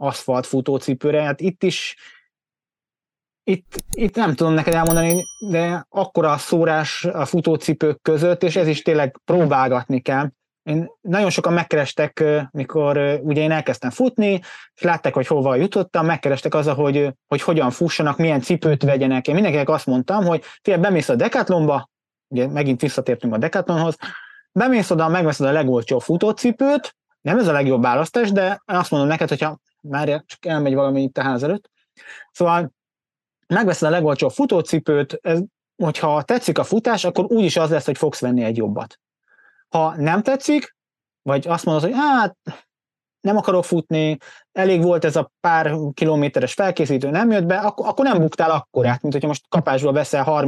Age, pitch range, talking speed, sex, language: 20-39, 140-180 Hz, 155 wpm, male, Hungarian